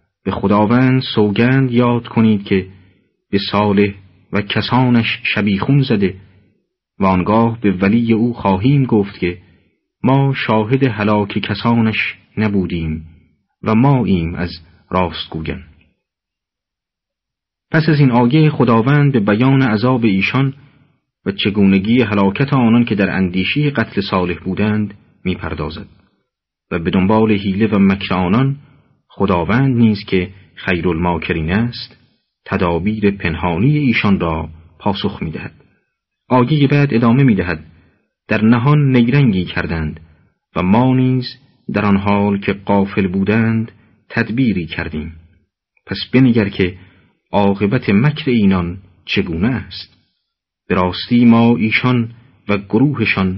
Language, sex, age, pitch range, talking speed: Persian, male, 40-59, 95-120 Hz, 115 wpm